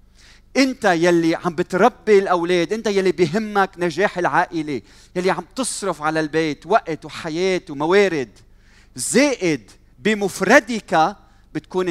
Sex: male